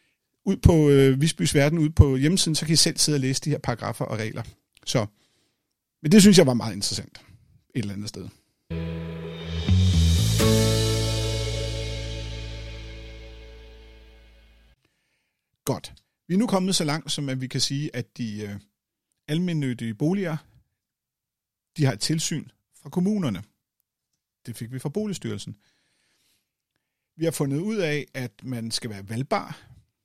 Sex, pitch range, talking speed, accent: male, 110-160 Hz, 130 wpm, native